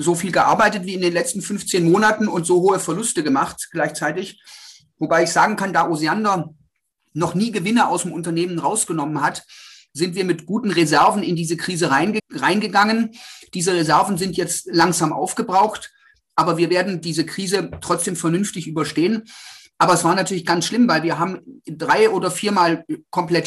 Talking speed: 165 wpm